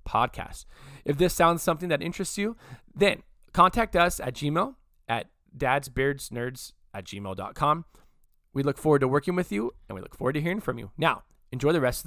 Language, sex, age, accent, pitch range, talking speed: English, male, 20-39, American, 125-180 Hz, 185 wpm